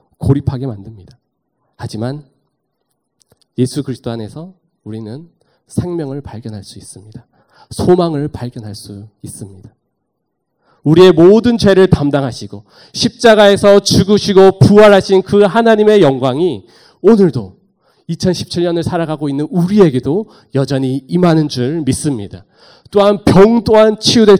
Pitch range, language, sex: 120-165 Hz, Korean, male